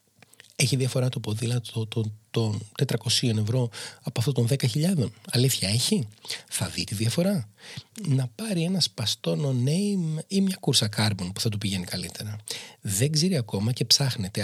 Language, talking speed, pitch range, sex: Greek, 160 wpm, 110-140 Hz, male